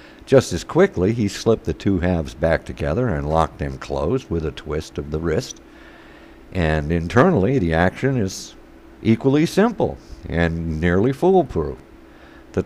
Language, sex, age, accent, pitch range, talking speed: English, male, 60-79, American, 75-100 Hz, 145 wpm